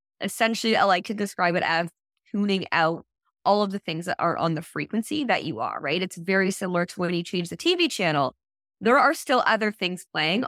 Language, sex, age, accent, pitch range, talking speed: English, female, 20-39, American, 170-225 Hz, 220 wpm